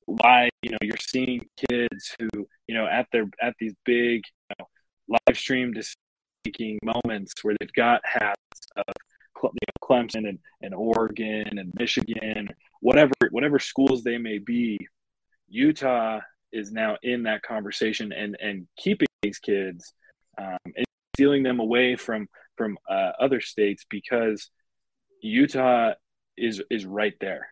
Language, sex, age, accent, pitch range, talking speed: English, male, 20-39, American, 110-125 Hz, 145 wpm